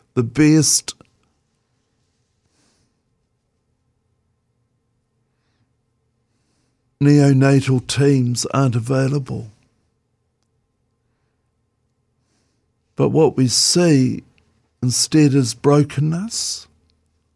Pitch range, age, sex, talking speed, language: 115-135 Hz, 60-79, male, 45 wpm, English